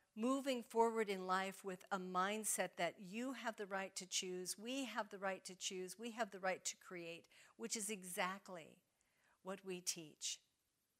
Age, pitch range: 50-69, 175-210 Hz